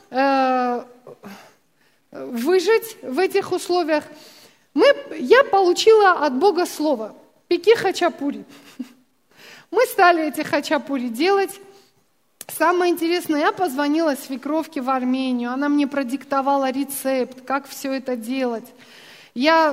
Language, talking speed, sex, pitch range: Russian, 95 wpm, female, 260-350 Hz